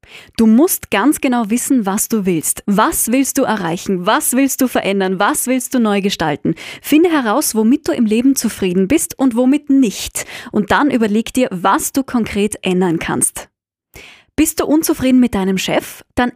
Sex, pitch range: female, 200-265 Hz